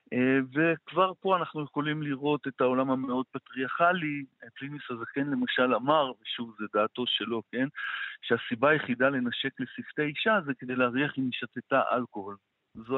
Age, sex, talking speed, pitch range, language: 50-69, male, 150 wpm, 125-155 Hz, Hebrew